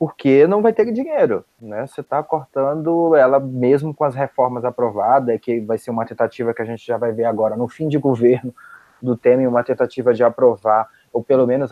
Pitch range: 115-145 Hz